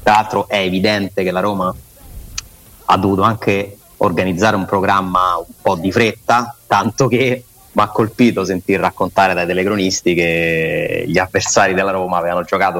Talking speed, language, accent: 155 wpm, Italian, native